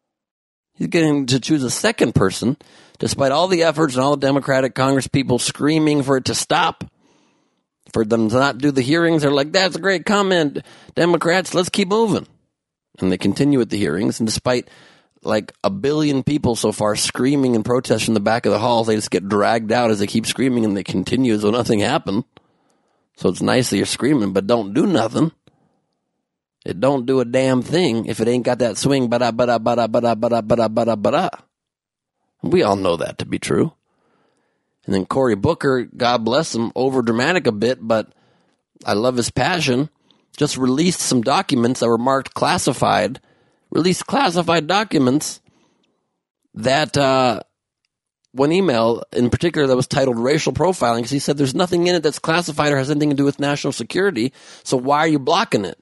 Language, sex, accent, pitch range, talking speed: English, male, American, 115-150 Hz, 190 wpm